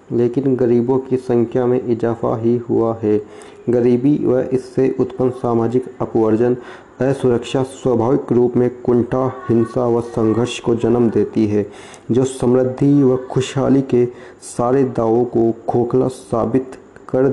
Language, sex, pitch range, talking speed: Hindi, male, 115-130 Hz, 130 wpm